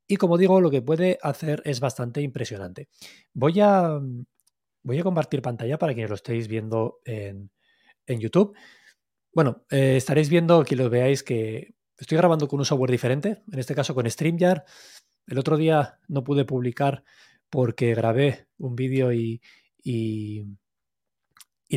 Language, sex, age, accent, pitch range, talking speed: Spanish, male, 20-39, Spanish, 120-155 Hz, 155 wpm